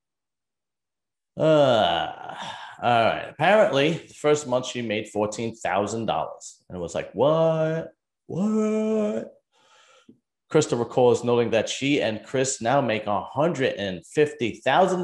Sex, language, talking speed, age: male, English, 130 wpm, 30-49